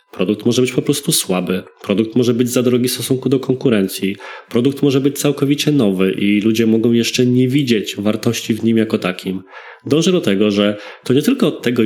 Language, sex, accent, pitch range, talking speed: Polish, male, native, 105-135 Hz, 195 wpm